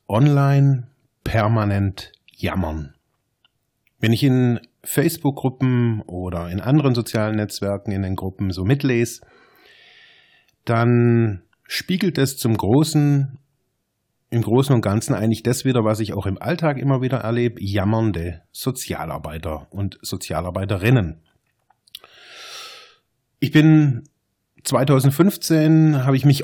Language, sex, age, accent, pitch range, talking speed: German, male, 30-49, German, 105-135 Hz, 105 wpm